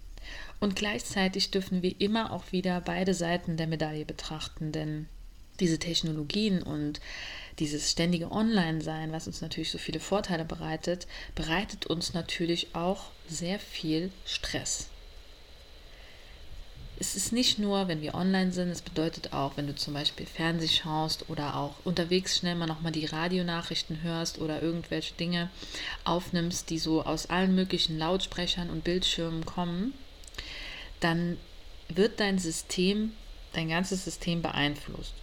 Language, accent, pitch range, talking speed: German, German, 155-180 Hz, 135 wpm